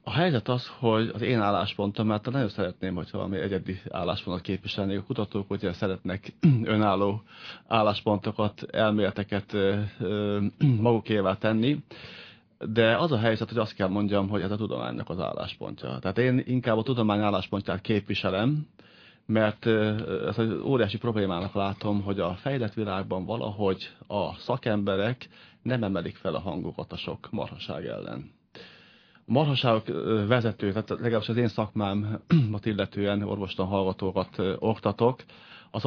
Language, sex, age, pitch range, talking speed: Hungarian, male, 30-49, 100-115 Hz, 130 wpm